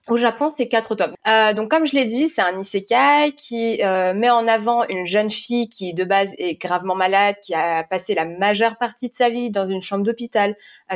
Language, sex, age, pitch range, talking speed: French, female, 20-39, 200-270 Hz, 230 wpm